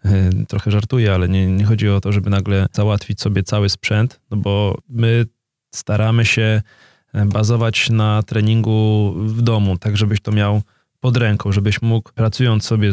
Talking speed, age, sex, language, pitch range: 160 wpm, 20-39, male, Polish, 105-120 Hz